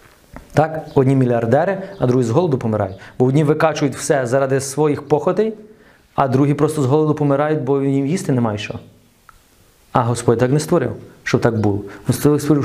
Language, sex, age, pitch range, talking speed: Ukrainian, male, 30-49, 135-210 Hz, 170 wpm